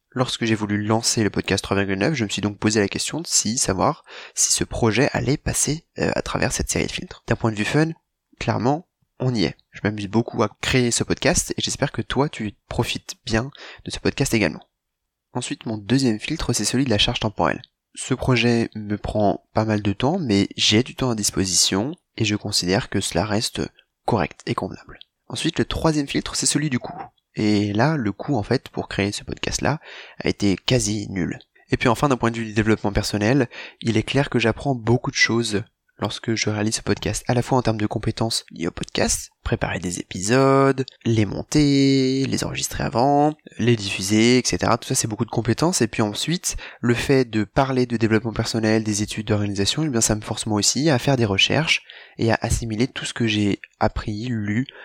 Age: 20-39